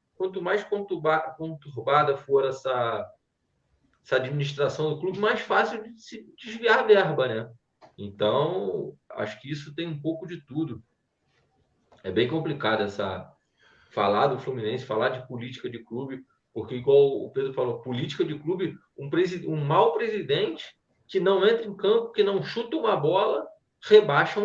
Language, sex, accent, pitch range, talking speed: Portuguese, male, Brazilian, 140-210 Hz, 145 wpm